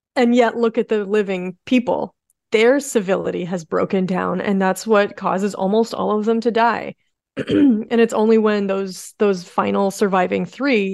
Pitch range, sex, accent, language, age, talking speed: 185-225 Hz, female, American, English, 30-49, 170 wpm